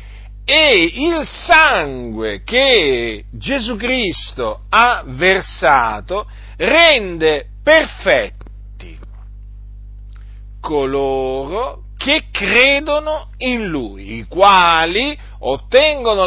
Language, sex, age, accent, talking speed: Italian, male, 50-69, native, 65 wpm